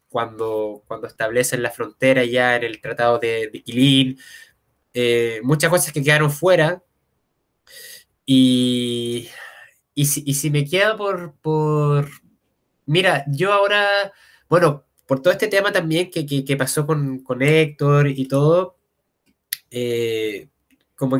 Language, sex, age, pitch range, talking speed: Spanish, male, 20-39, 125-155 Hz, 130 wpm